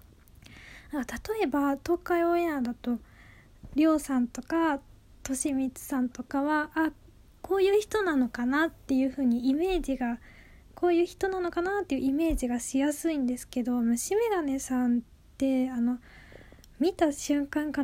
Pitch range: 250-310 Hz